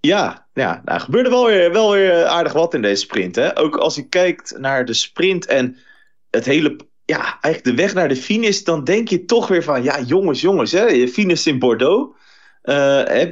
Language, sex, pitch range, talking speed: Dutch, male, 115-175 Hz, 210 wpm